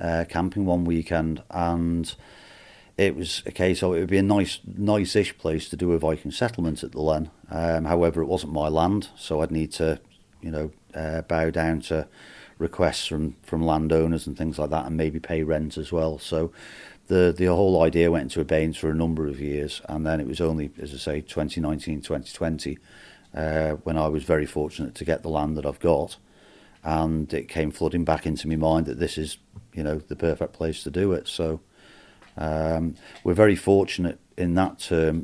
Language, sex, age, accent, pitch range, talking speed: English, male, 40-59, British, 80-90 Hz, 200 wpm